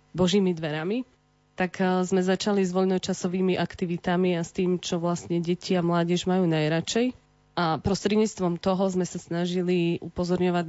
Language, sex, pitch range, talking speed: Slovak, female, 170-190 Hz, 140 wpm